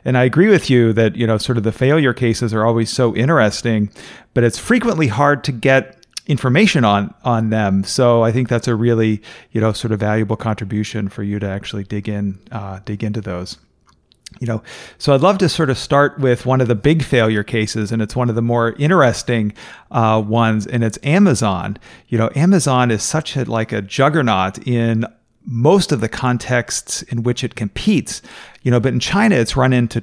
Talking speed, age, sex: 205 wpm, 40-59, male